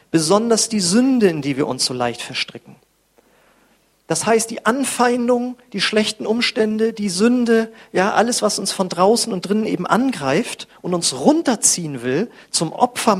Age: 40-59